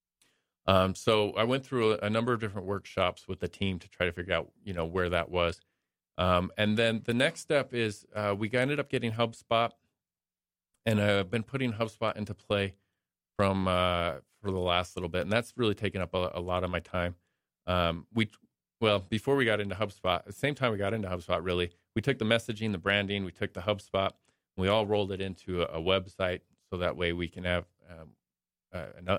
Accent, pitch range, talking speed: American, 85-110 Hz, 220 wpm